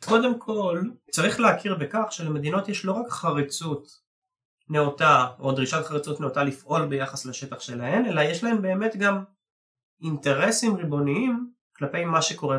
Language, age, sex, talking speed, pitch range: Hebrew, 30-49, male, 140 wpm, 135-195 Hz